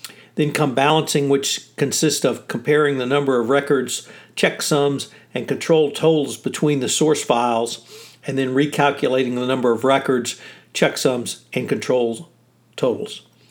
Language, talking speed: English, 135 wpm